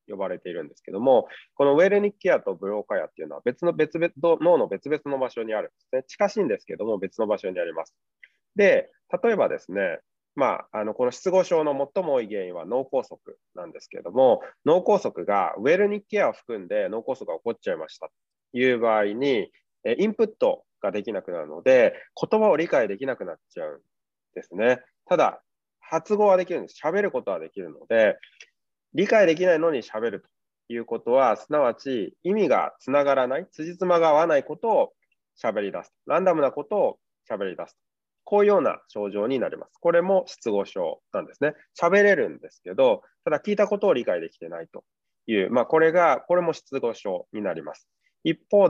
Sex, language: male, Japanese